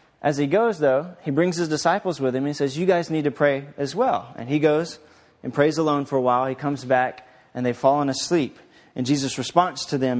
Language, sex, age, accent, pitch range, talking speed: English, male, 30-49, American, 130-175 Hz, 235 wpm